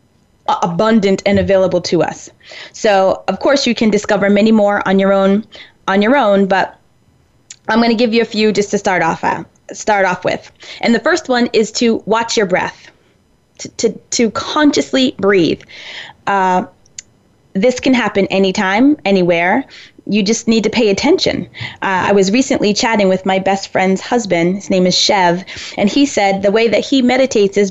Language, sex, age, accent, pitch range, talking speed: English, female, 20-39, American, 195-235 Hz, 180 wpm